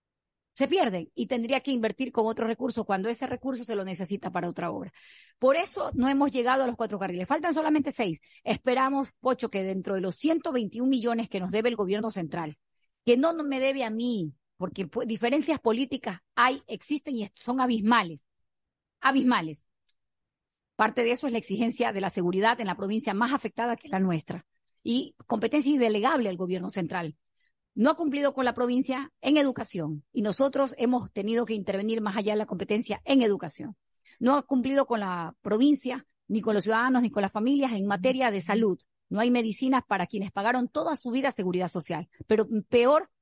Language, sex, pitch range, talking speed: Spanish, female, 200-260 Hz, 185 wpm